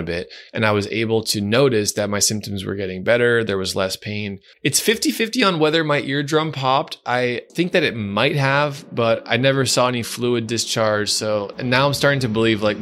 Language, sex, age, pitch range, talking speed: English, male, 20-39, 100-115 Hz, 215 wpm